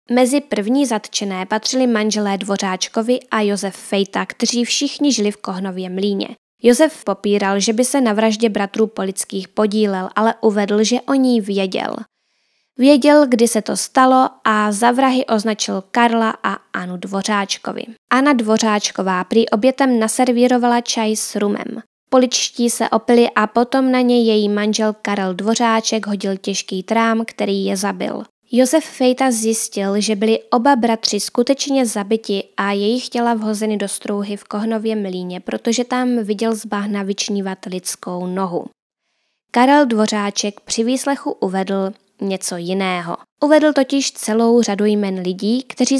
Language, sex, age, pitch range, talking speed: Czech, female, 20-39, 200-240 Hz, 140 wpm